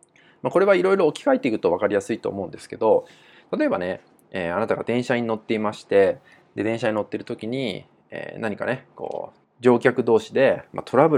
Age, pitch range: 20-39, 120-185 Hz